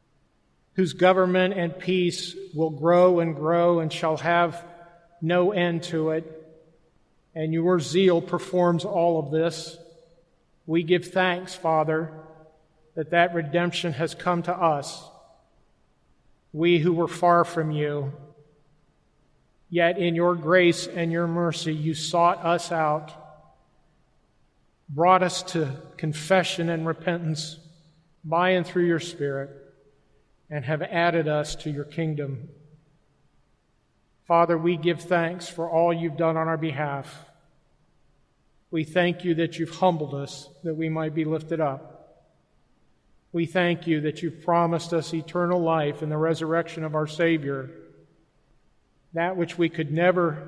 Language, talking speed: English, 135 wpm